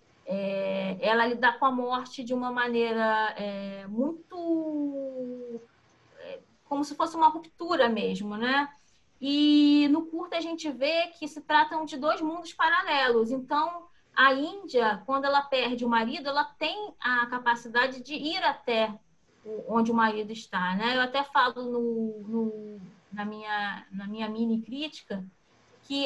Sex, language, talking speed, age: female, Portuguese, 135 wpm, 20-39